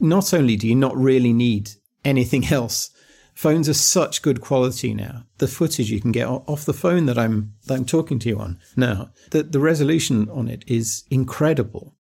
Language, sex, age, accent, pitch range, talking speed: English, male, 40-59, British, 115-150 Hz, 190 wpm